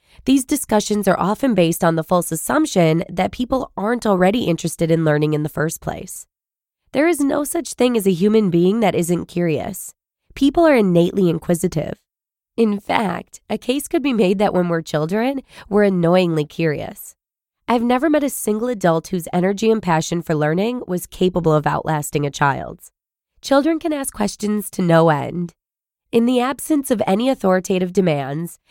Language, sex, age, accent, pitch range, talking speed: English, female, 20-39, American, 165-235 Hz, 170 wpm